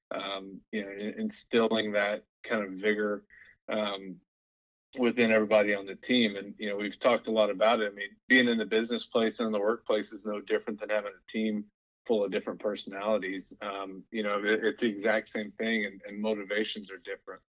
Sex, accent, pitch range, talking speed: male, American, 100-115 Hz, 200 wpm